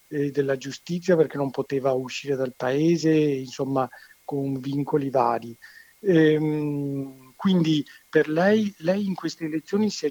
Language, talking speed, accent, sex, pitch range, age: Italian, 135 wpm, native, male, 140-175 Hz, 50-69